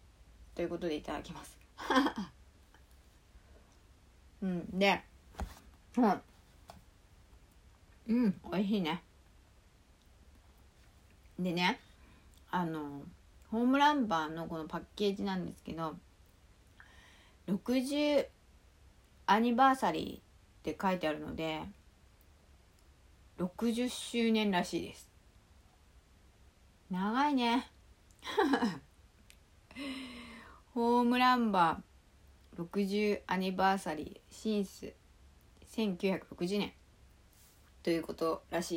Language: Japanese